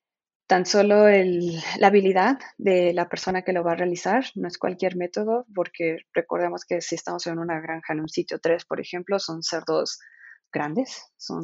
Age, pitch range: 20-39, 165-205 Hz